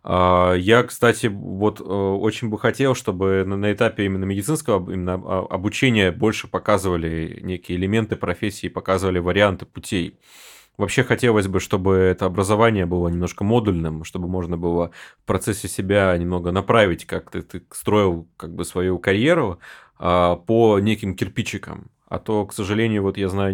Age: 20-39